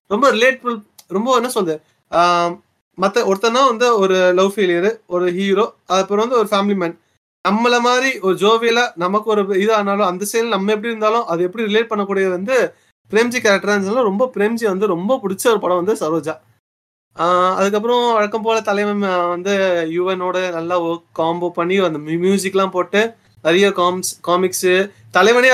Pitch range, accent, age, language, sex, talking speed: 180-220 Hz, native, 30-49, Tamil, male, 150 wpm